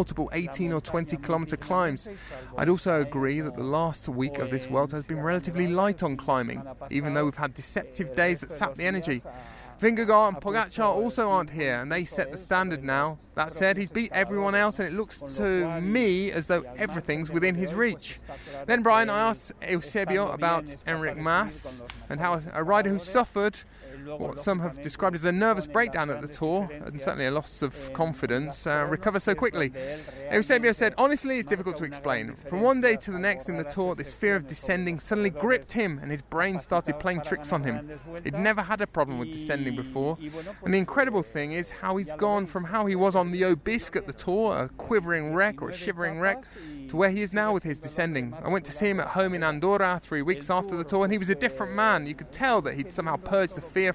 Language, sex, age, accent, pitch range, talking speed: English, male, 20-39, British, 150-200 Hz, 220 wpm